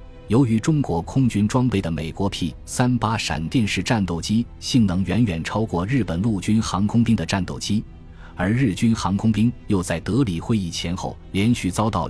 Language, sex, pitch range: Chinese, male, 85-115 Hz